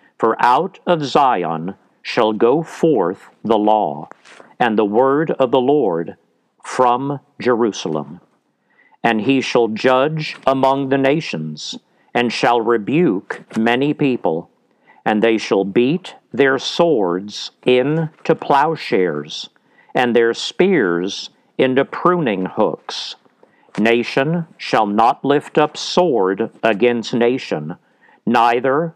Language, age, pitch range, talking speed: English, 50-69, 110-145 Hz, 110 wpm